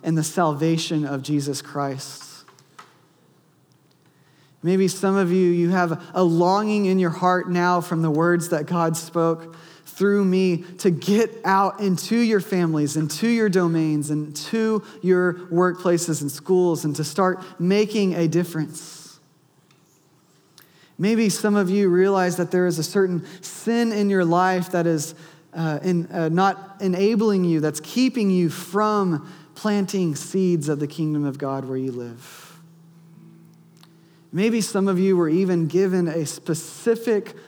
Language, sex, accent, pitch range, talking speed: English, male, American, 155-190 Hz, 145 wpm